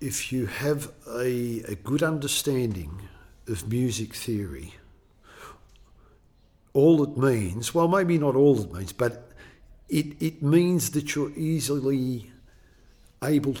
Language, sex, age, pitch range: English, male, 50-69, 110-145 Hz